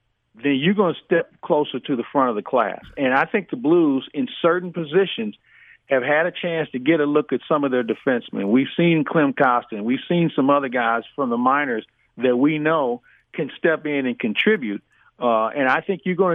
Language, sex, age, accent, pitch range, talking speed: English, male, 50-69, American, 125-170 Hz, 215 wpm